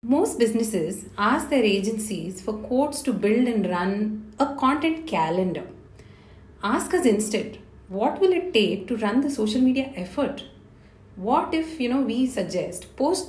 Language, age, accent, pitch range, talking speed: English, 30-49, Indian, 185-270 Hz, 155 wpm